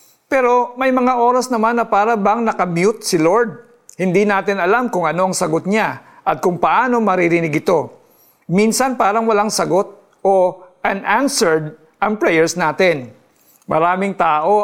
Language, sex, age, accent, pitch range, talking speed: Filipino, male, 50-69, native, 180-230 Hz, 140 wpm